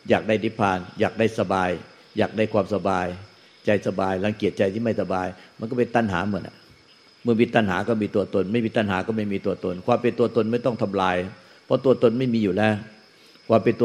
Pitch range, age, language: 100-115 Hz, 60-79, Thai